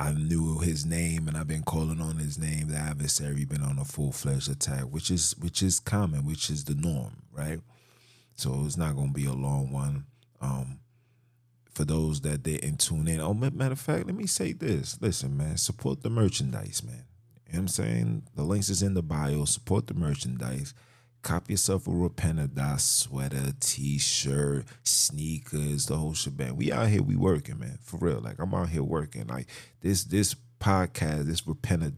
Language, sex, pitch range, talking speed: English, male, 70-100 Hz, 190 wpm